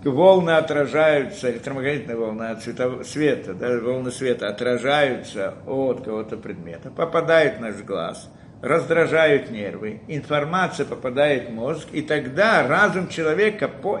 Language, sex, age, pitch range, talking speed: Russian, male, 50-69, 135-215 Hz, 120 wpm